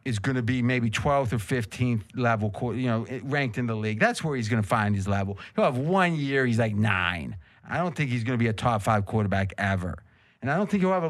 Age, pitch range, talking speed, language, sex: 30-49, 115-160 Hz, 265 wpm, English, male